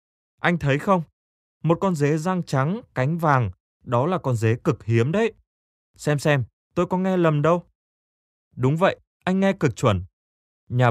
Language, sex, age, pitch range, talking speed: Vietnamese, male, 20-39, 110-165 Hz, 170 wpm